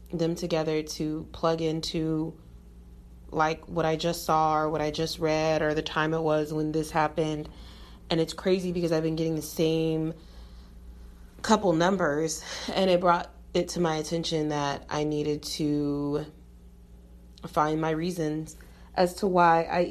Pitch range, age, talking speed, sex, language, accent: 150-165 Hz, 30-49, 155 wpm, female, English, American